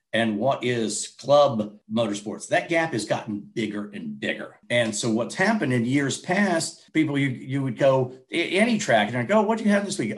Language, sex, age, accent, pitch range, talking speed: English, male, 50-69, American, 115-150 Hz, 200 wpm